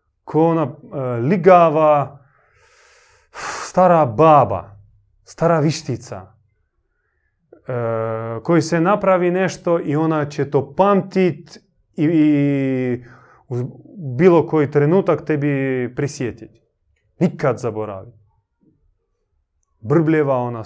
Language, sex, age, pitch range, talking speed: Croatian, male, 30-49, 120-165 Hz, 85 wpm